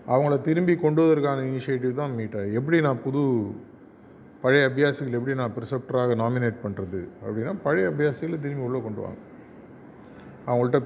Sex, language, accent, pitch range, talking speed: male, Tamil, native, 115-145 Hz, 140 wpm